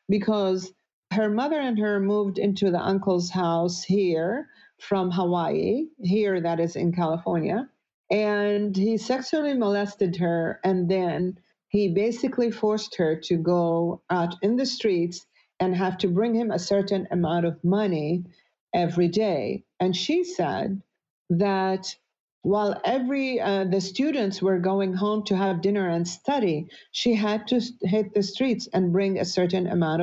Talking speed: 150 wpm